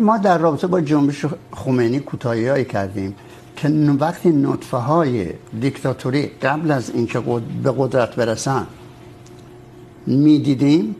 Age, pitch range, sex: 60-79, 125-160 Hz, male